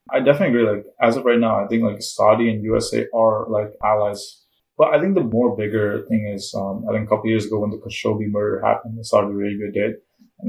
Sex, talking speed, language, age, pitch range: male, 245 wpm, English, 20-39, 105-115 Hz